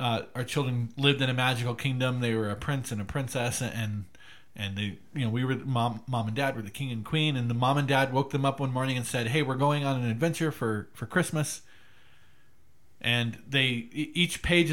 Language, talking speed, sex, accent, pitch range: English, 230 wpm, male, American, 115-135 Hz